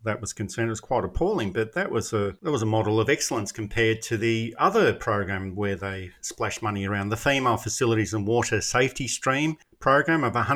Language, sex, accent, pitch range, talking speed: English, male, Australian, 110-130 Hz, 205 wpm